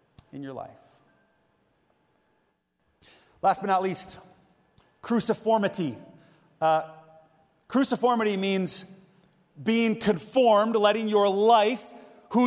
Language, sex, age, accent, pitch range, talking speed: English, male, 30-49, American, 180-250 Hz, 80 wpm